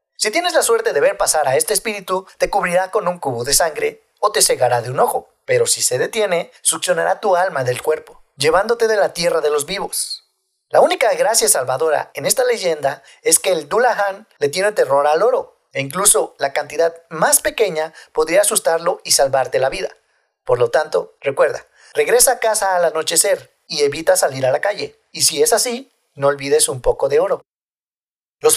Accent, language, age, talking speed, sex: Mexican, Spanish, 40-59, 195 wpm, male